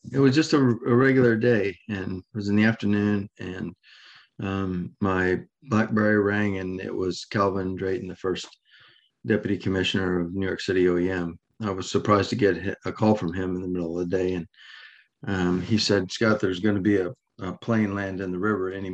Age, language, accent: 40-59, English, American